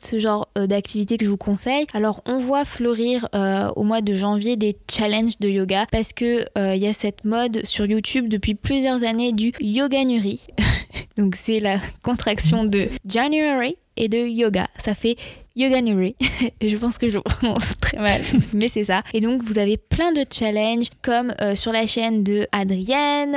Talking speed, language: 185 wpm, French